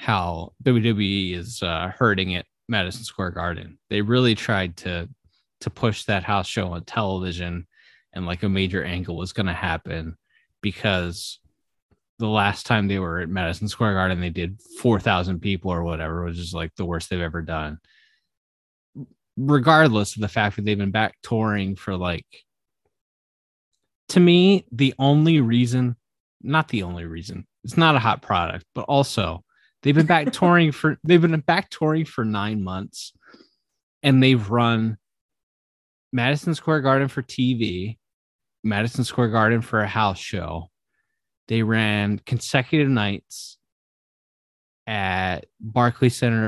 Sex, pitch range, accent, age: male, 90-120 Hz, American, 20-39